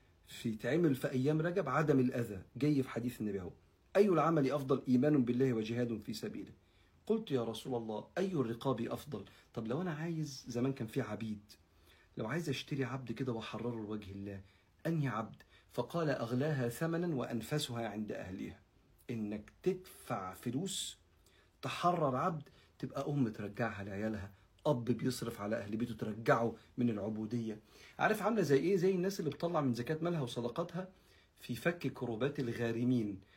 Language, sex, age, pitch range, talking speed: Arabic, male, 50-69, 110-150 Hz, 150 wpm